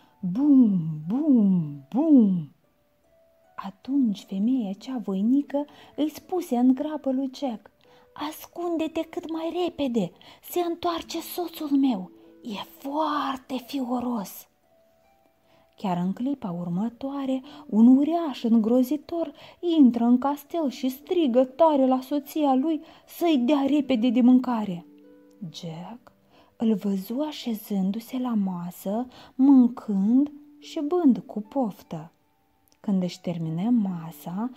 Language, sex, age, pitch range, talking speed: Romanian, female, 20-39, 195-295 Hz, 105 wpm